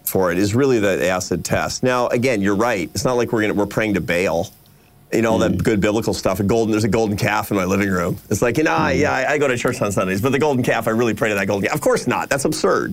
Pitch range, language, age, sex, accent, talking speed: 105-140 Hz, English, 40-59, male, American, 300 wpm